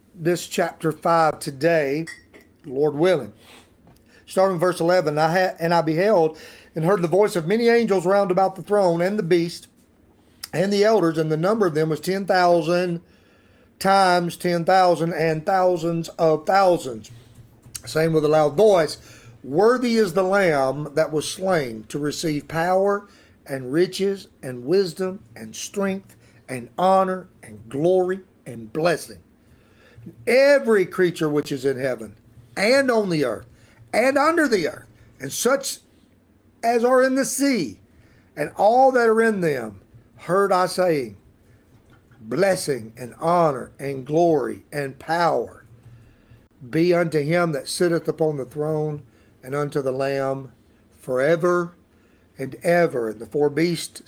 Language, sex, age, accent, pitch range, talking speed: English, male, 40-59, American, 135-185 Hz, 140 wpm